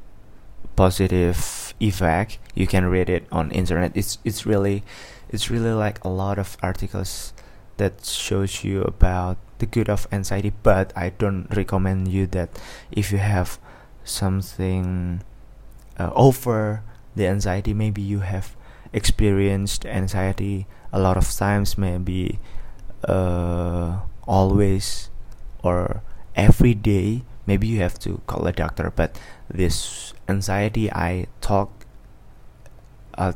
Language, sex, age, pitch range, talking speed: Indonesian, male, 20-39, 95-115 Hz, 120 wpm